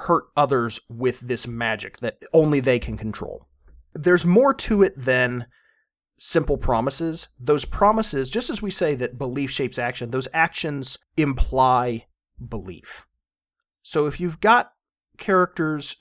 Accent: American